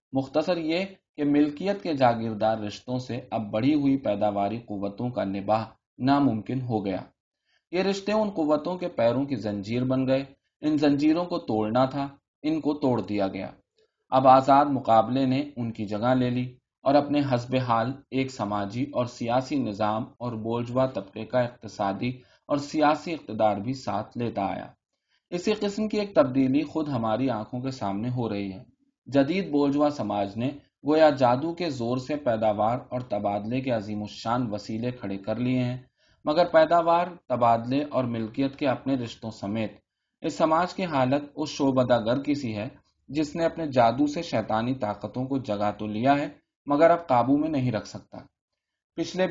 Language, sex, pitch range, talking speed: Urdu, male, 110-145 Hz, 170 wpm